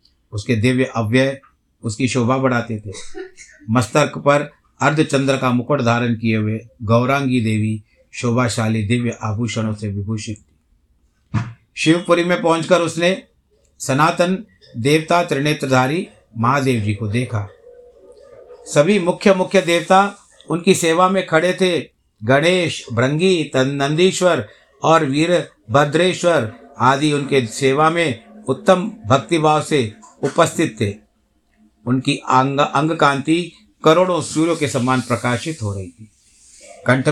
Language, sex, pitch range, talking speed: Hindi, male, 110-155 Hz, 110 wpm